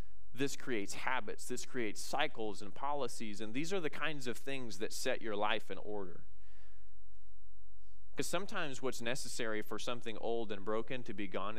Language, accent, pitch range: English, American, 95-110 Hz